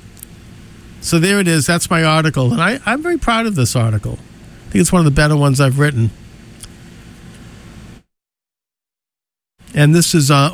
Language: English